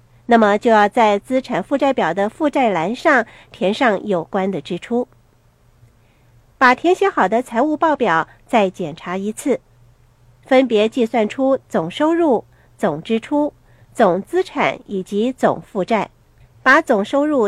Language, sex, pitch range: Chinese, female, 175-255 Hz